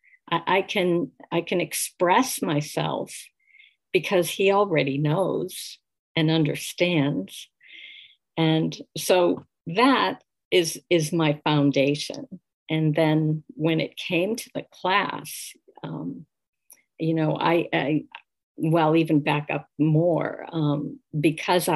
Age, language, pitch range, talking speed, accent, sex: 50-69, English, 150-180 Hz, 110 wpm, American, female